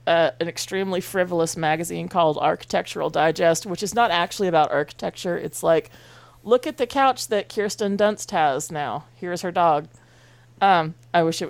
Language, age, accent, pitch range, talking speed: English, 30-49, American, 160-225 Hz, 165 wpm